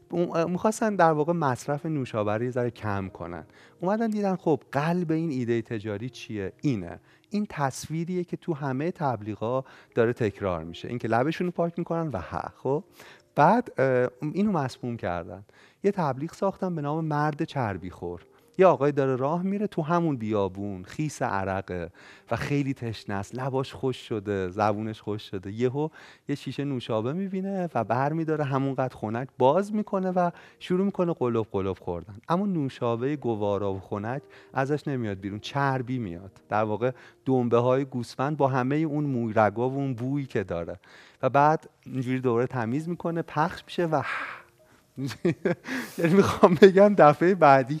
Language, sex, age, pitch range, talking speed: Persian, male, 40-59, 110-165 Hz, 155 wpm